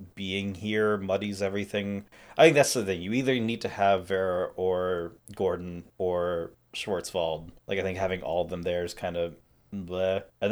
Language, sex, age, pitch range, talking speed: English, male, 30-49, 90-110 Hz, 185 wpm